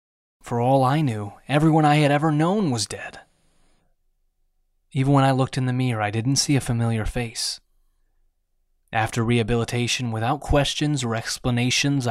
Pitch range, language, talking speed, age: 110-145 Hz, English, 150 wpm, 20-39